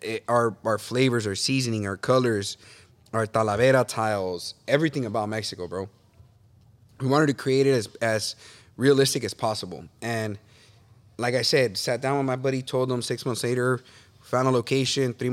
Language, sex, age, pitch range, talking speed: English, male, 20-39, 105-125 Hz, 170 wpm